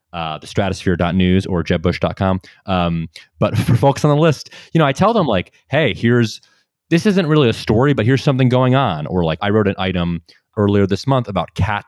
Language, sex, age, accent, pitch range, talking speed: English, male, 30-49, American, 85-115 Hz, 200 wpm